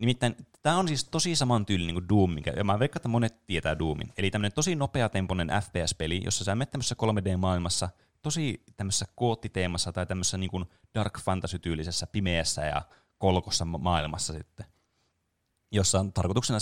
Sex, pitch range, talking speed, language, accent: male, 85-110 Hz, 155 wpm, Finnish, native